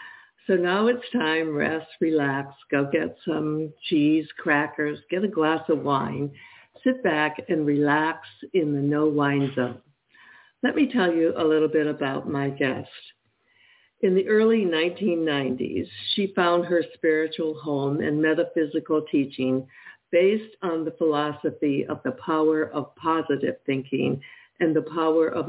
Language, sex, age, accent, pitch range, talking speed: English, female, 60-79, American, 150-195 Hz, 145 wpm